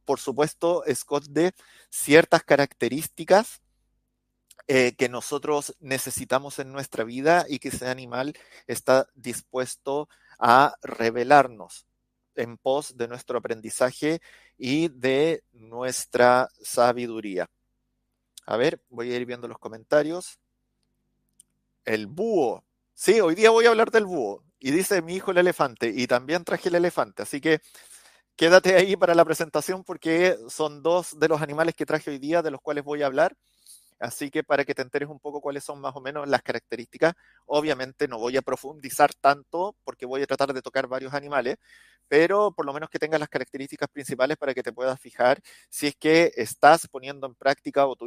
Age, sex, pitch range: 30-49, male, 130-160 Hz